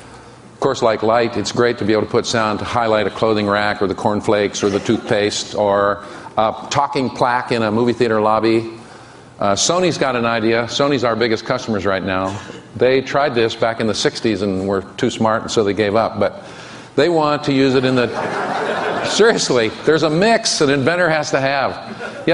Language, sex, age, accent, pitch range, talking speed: English, male, 50-69, American, 110-135 Hz, 205 wpm